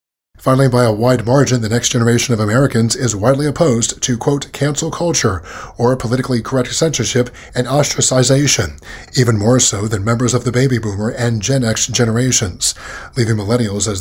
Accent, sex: American, male